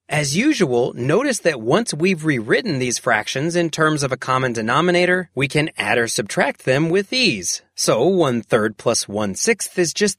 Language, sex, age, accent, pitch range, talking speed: English, male, 30-49, American, 125-185 Hz, 185 wpm